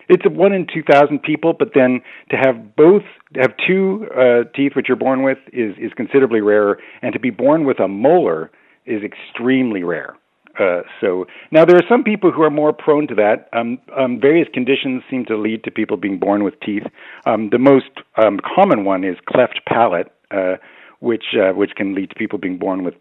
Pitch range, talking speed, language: 105-140 Hz, 210 wpm, English